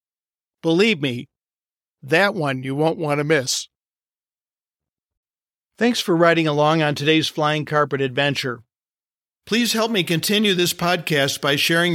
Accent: American